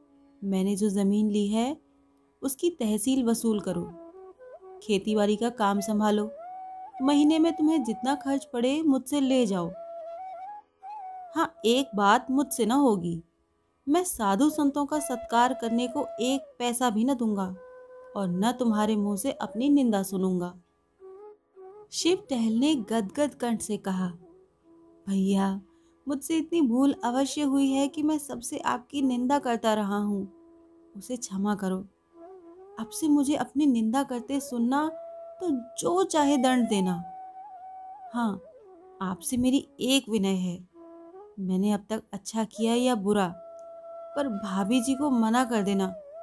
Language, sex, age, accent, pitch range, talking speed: Hindi, female, 30-49, native, 210-320 Hz, 135 wpm